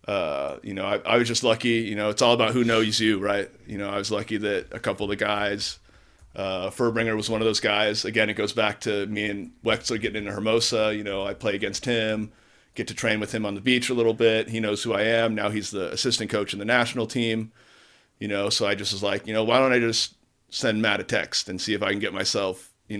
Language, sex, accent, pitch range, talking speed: English, male, American, 100-115 Hz, 265 wpm